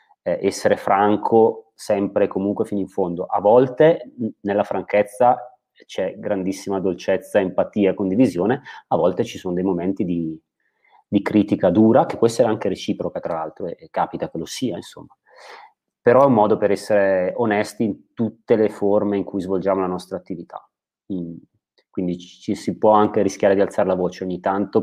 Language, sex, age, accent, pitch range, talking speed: Italian, male, 30-49, native, 90-105 Hz, 165 wpm